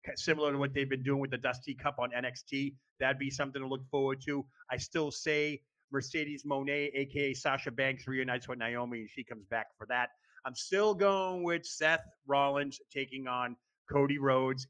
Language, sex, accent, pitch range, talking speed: English, male, American, 140-185 Hz, 190 wpm